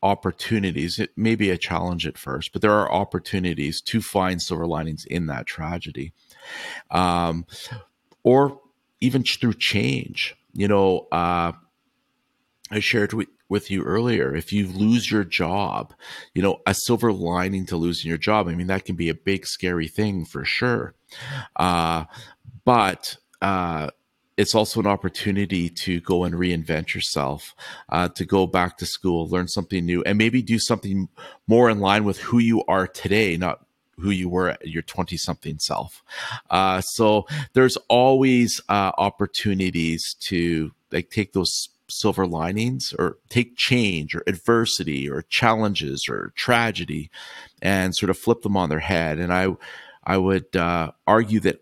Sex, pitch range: male, 85-105 Hz